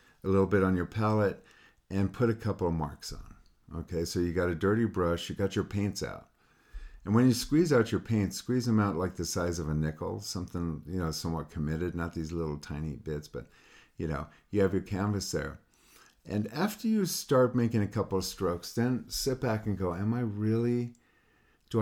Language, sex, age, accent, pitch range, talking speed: English, male, 50-69, American, 80-105 Hz, 210 wpm